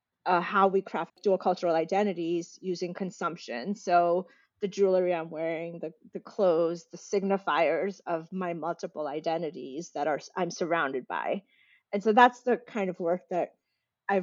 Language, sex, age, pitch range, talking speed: English, female, 30-49, 170-205 Hz, 155 wpm